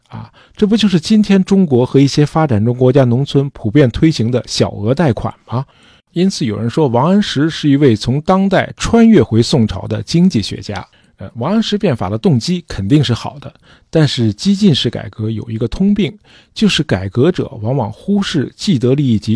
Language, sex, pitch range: Chinese, male, 110-145 Hz